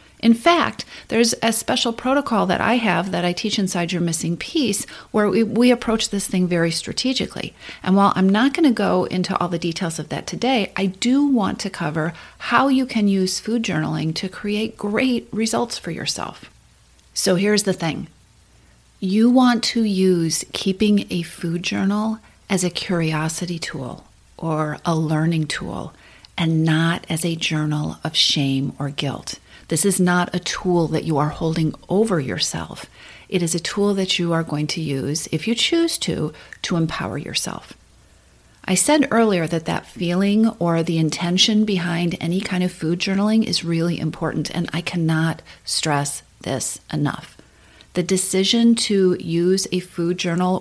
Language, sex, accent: English, female, American